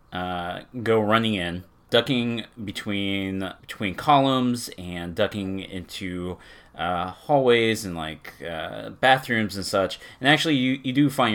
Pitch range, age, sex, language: 90-115 Hz, 30-49, male, English